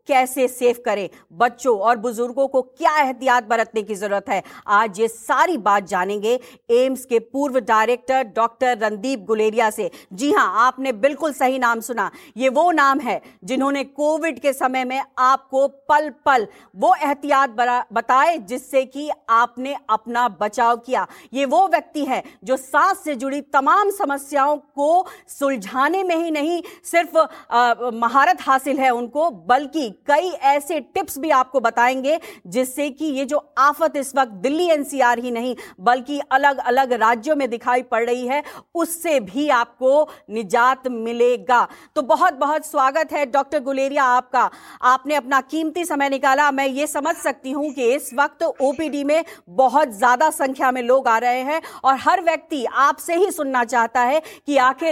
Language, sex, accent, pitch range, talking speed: English, female, Indian, 245-300 Hz, 135 wpm